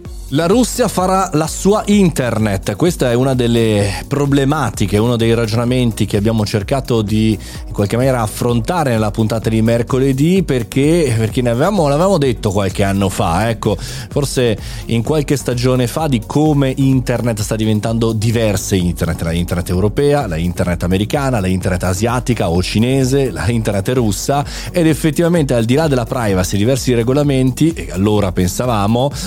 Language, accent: Italian, native